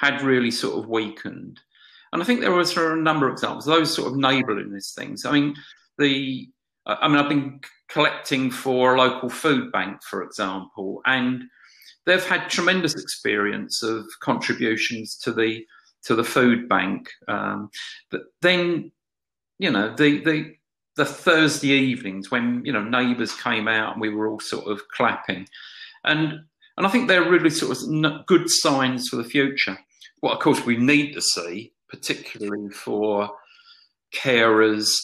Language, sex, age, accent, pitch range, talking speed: English, male, 40-59, British, 105-145 Hz, 160 wpm